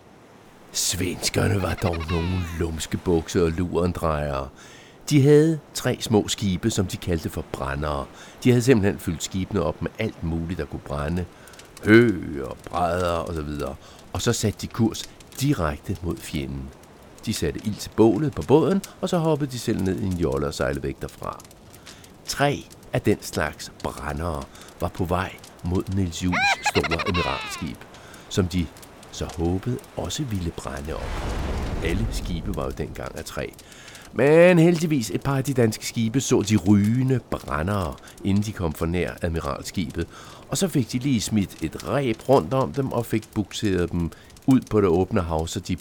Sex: male